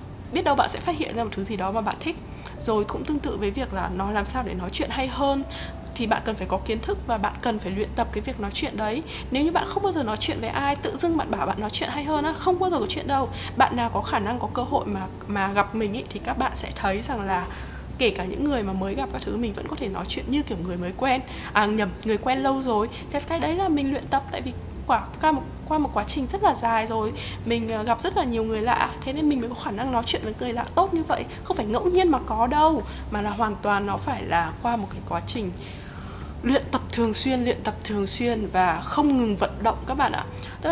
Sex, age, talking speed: female, 20-39, 285 wpm